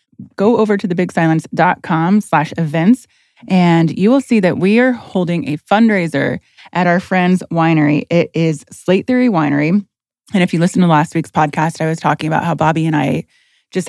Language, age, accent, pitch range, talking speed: English, 20-39, American, 155-185 Hz, 180 wpm